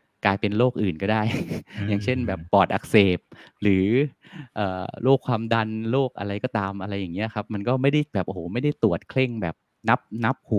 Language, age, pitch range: Thai, 20-39, 95-115 Hz